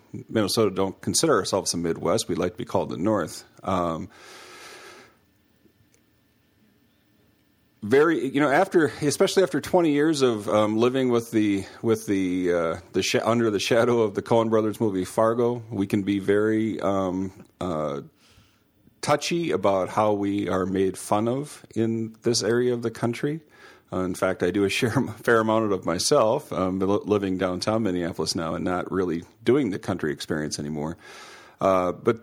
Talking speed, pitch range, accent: 160 wpm, 95-120 Hz, American